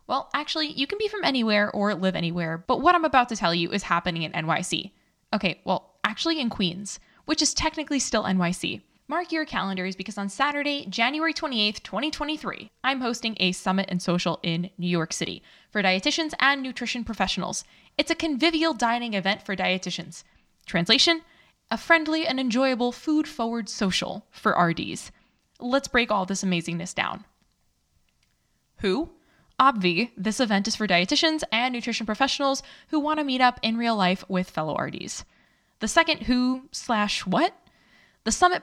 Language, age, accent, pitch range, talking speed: English, 10-29, American, 185-275 Hz, 165 wpm